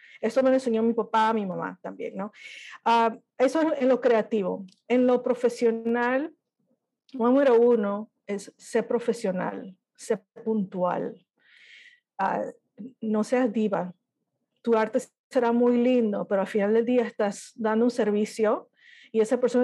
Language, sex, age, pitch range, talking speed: English, female, 50-69, 215-250 Hz, 140 wpm